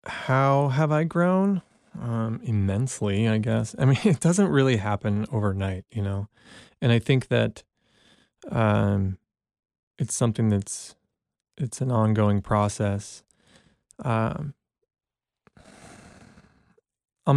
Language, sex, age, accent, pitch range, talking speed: English, male, 20-39, American, 100-130 Hz, 105 wpm